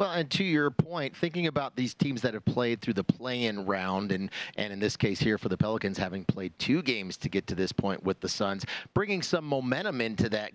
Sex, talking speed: male, 245 wpm